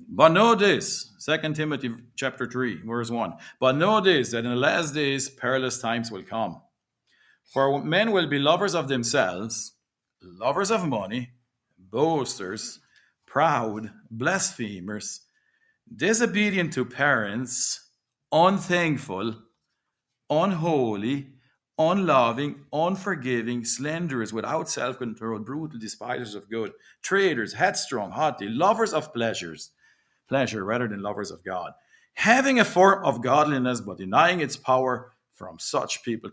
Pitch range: 120-165 Hz